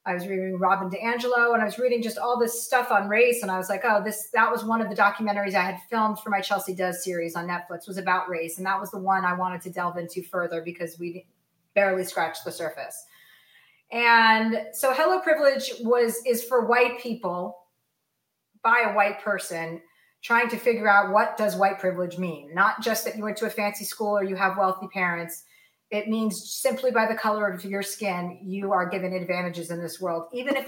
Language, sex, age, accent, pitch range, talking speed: English, female, 30-49, American, 185-230 Hz, 215 wpm